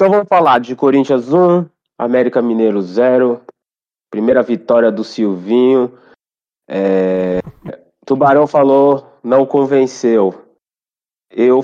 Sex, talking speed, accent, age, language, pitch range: male, 100 wpm, Brazilian, 20-39, Portuguese, 115-140 Hz